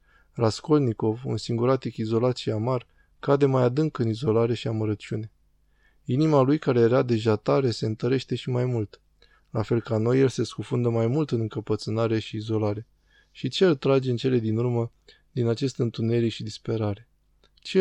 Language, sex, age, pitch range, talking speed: Romanian, male, 20-39, 110-130 Hz, 170 wpm